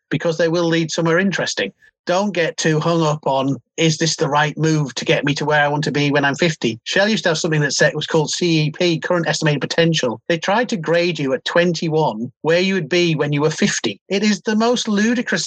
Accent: British